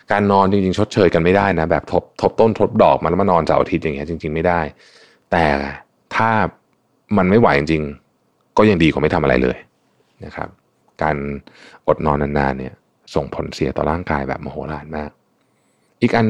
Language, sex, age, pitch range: Thai, male, 20-39, 75-95 Hz